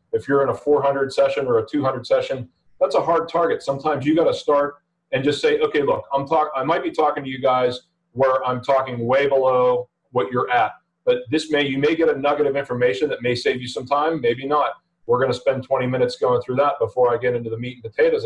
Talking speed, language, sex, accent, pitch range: 250 wpm, English, male, American, 125-175 Hz